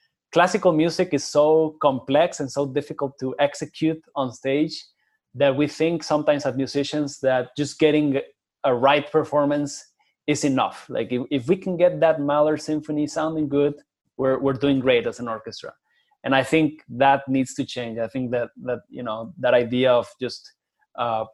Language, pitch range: English, 130-155 Hz